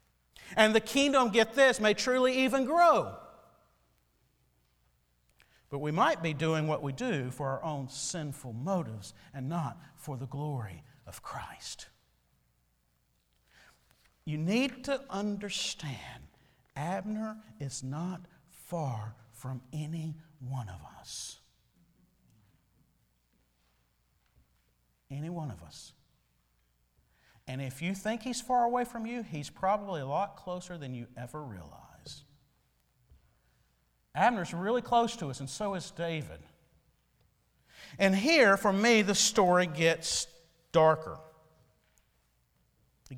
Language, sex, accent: English, male, American